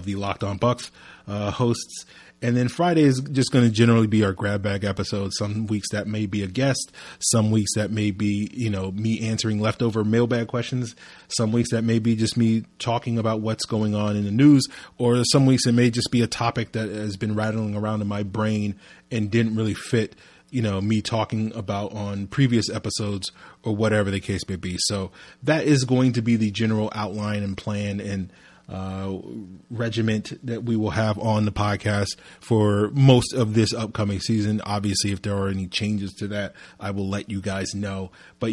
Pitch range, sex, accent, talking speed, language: 100-115 Hz, male, American, 200 wpm, English